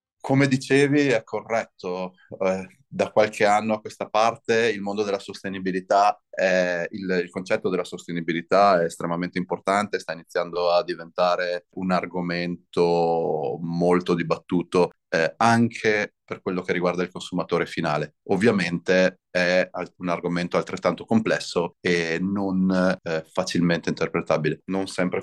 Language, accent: Italian, native